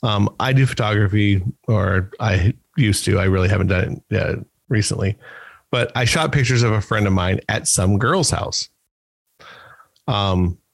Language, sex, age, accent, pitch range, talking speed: English, male, 40-59, American, 105-130 Hz, 155 wpm